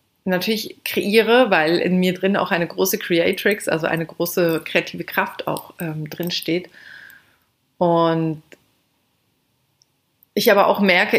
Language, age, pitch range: German, 30-49, 155-185 Hz